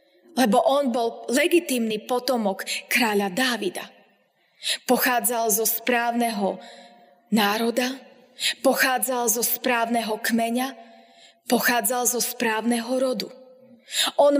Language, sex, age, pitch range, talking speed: Slovak, female, 20-39, 215-255 Hz, 85 wpm